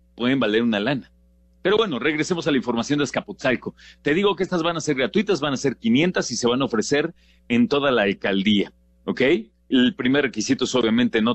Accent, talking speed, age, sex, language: Mexican, 210 wpm, 40-59, male, Spanish